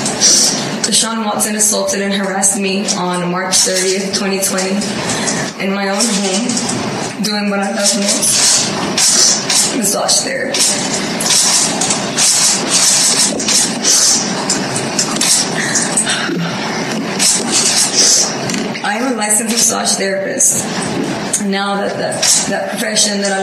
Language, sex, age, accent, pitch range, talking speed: English, female, 20-39, American, 195-215 Hz, 85 wpm